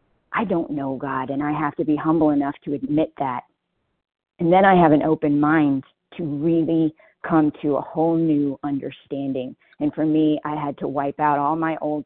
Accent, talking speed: American, 200 wpm